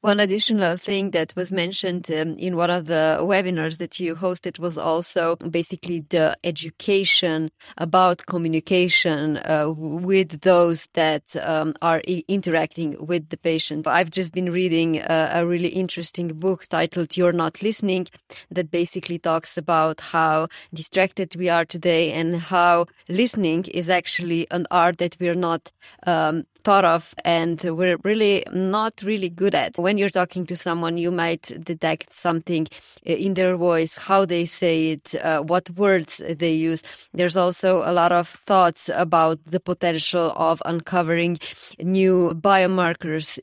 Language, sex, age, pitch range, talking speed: English, female, 20-39, 165-180 Hz, 150 wpm